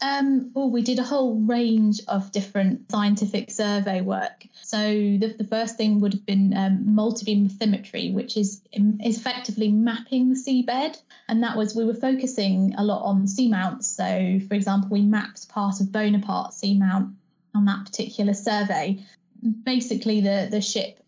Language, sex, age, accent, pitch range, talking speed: English, female, 20-39, British, 200-220 Hz, 165 wpm